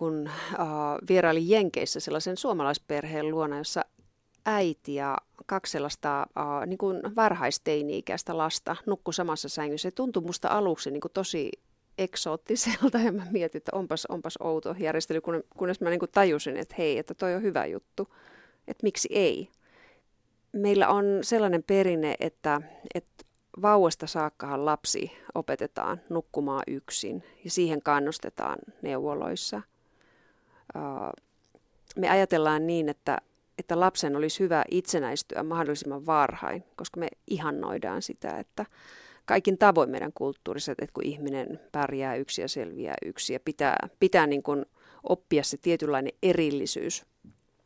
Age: 30-49